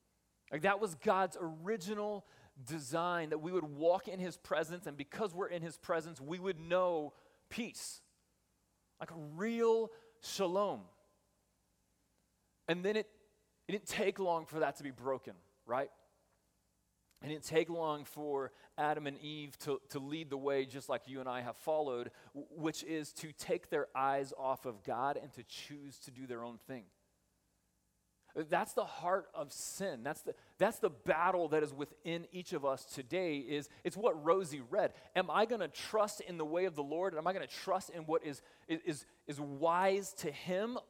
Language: English